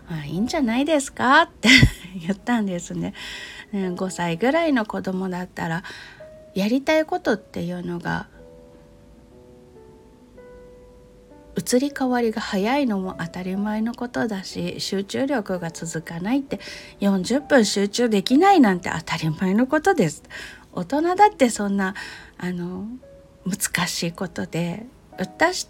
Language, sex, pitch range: Japanese, female, 180-265 Hz